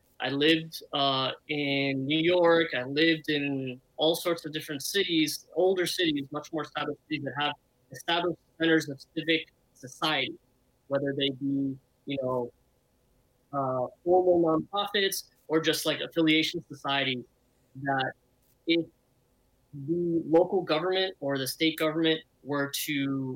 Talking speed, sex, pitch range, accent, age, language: 130 wpm, male, 135-170 Hz, American, 20-39, English